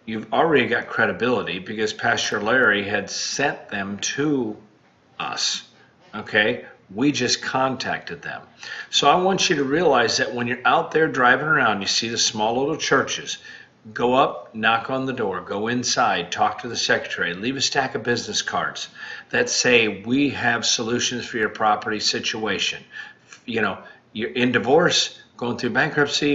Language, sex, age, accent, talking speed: English, male, 40-59, American, 160 wpm